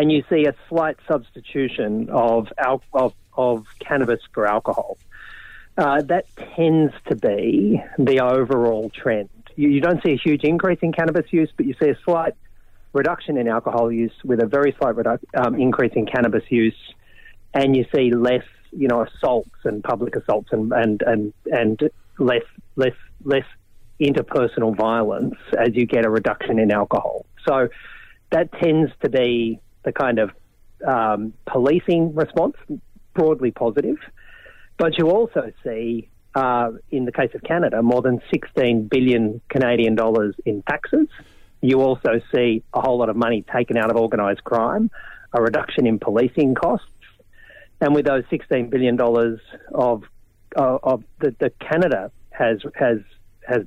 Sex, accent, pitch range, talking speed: male, Australian, 115-145 Hz, 155 wpm